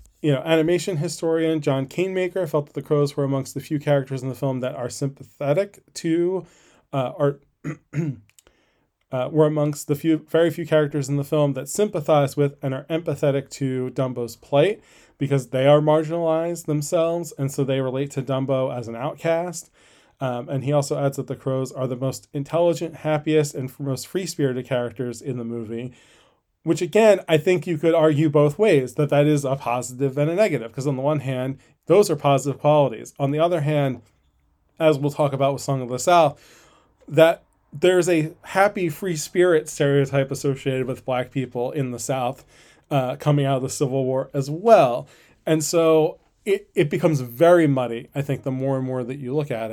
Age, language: 20-39, English